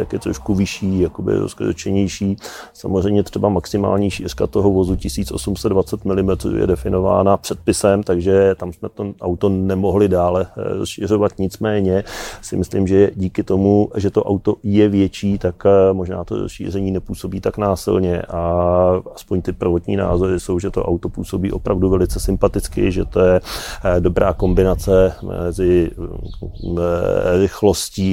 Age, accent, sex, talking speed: 30-49, native, male, 135 wpm